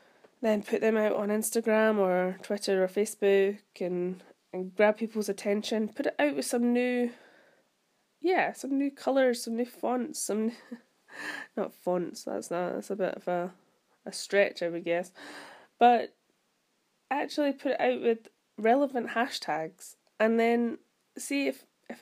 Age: 20-39